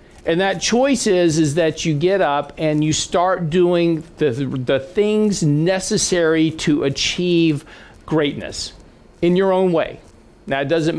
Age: 50-69